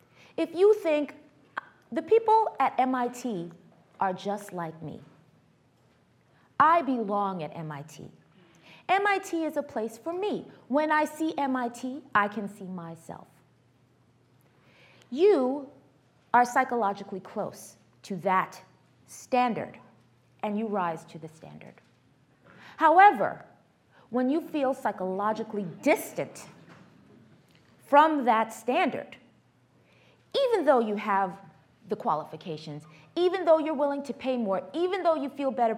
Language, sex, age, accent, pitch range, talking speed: English, female, 30-49, American, 185-280 Hz, 115 wpm